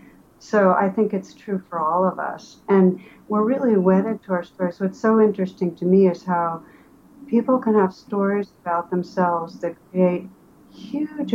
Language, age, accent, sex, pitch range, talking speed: English, 60-79, American, female, 175-205 Hz, 170 wpm